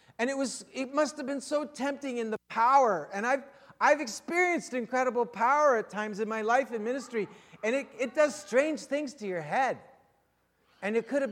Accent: American